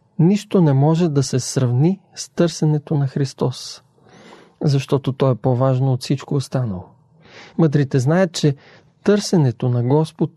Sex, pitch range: male, 130-170 Hz